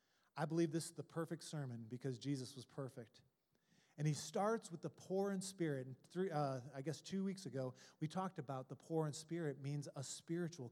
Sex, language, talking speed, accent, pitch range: male, English, 205 wpm, American, 160-215 Hz